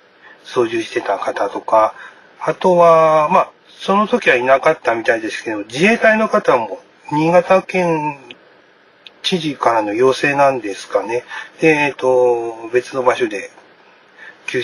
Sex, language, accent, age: male, Japanese, native, 30-49